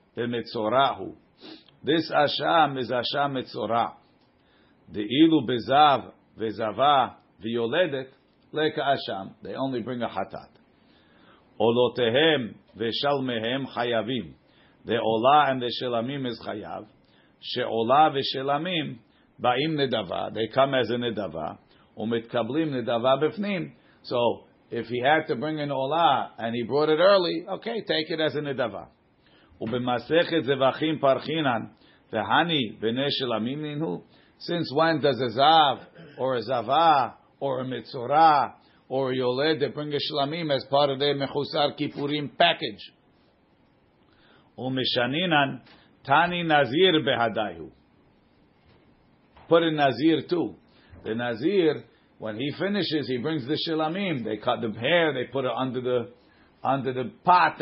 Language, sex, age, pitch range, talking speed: English, male, 50-69, 120-155 Hz, 110 wpm